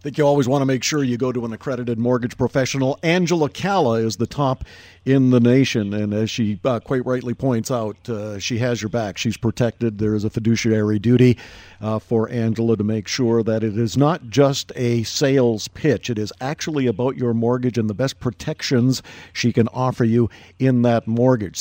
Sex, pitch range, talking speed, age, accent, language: male, 115-140 Hz, 205 wpm, 50-69, American, English